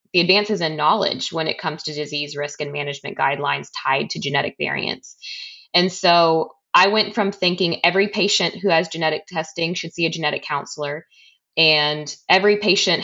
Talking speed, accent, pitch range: 170 wpm, American, 155-185 Hz